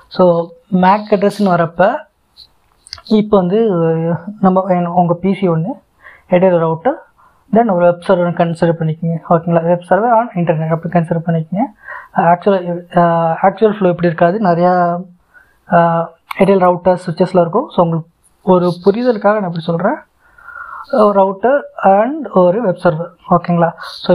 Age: 20-39